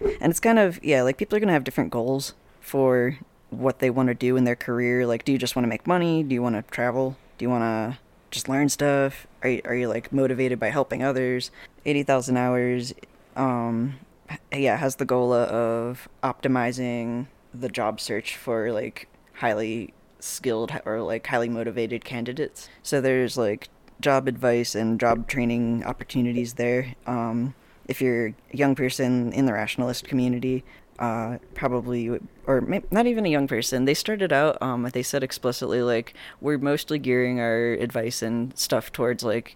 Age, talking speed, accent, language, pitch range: 10-29, 175 wpm, American, English, 120-130 Hz